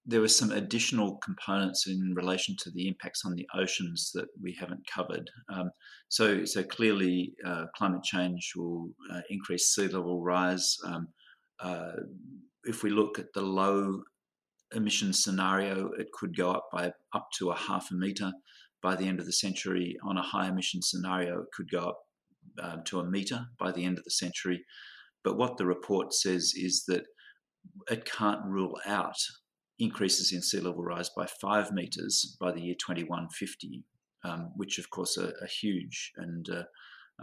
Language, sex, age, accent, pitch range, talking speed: English, male, 40-59, Australian, 90-100 Hz, 175 wpm